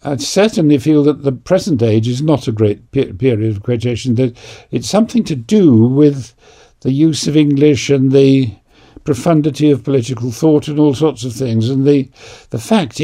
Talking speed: 185 wpm